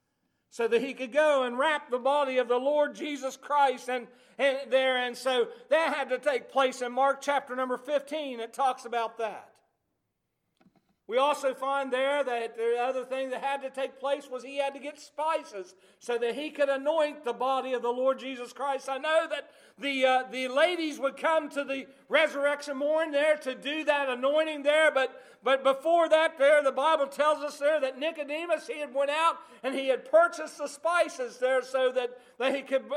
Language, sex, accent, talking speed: English, male, American, 200 wpm